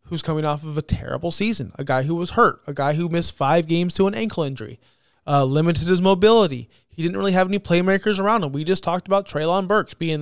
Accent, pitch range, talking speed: American, 145-190 Hz, 240 wpm